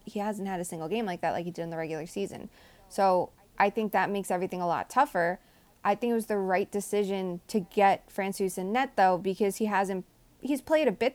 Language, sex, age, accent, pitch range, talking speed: English, female, 20-39, American, 180-205 Hz, 235 wpm